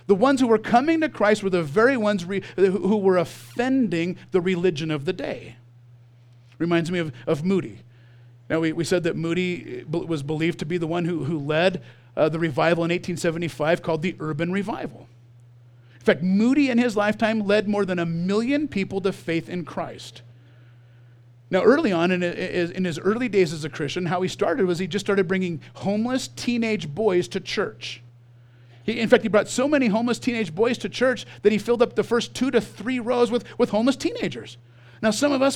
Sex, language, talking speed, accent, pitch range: male, English, 195 wpm, American, 155-225 Hz